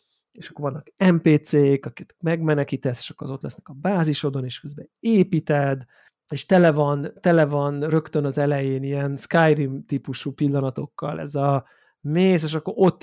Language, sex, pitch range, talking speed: Hungarian, male, 140-160 Hz, 155 wpm